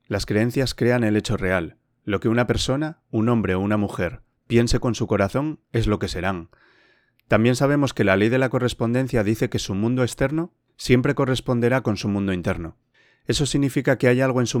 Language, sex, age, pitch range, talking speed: Spanish, male, 30-49, 100-130 Hz, 200 wpm